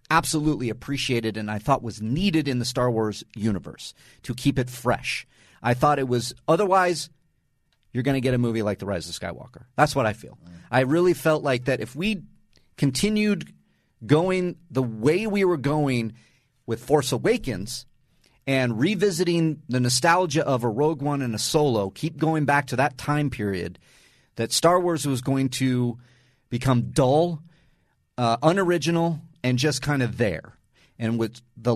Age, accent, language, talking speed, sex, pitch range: 40-59, American, English, 170 wpm, male, 120-155 Hz